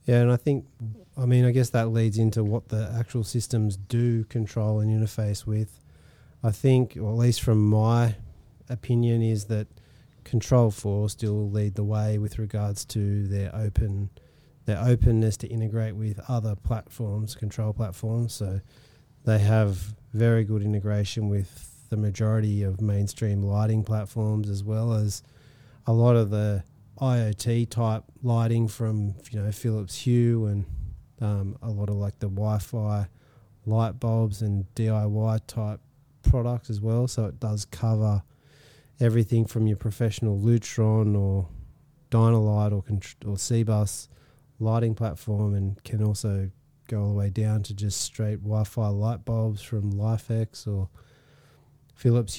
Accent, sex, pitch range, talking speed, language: Australian, male, 105-120 Hz, 145 wpm, English